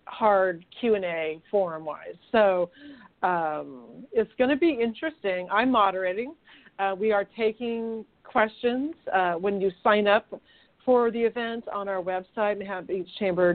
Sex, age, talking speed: female, 40-59, 125 wpm